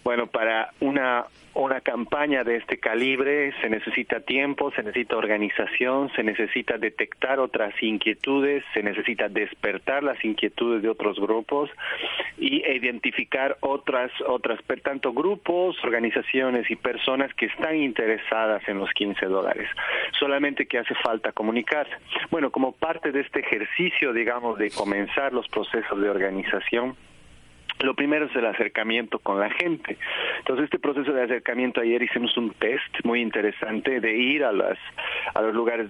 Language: Spanish